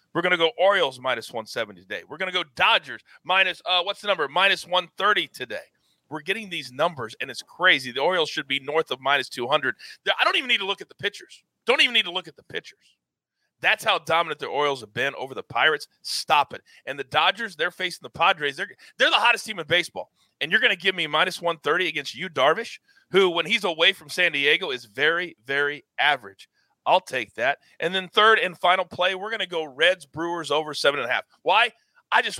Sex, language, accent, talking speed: male, English, American, 230 wpm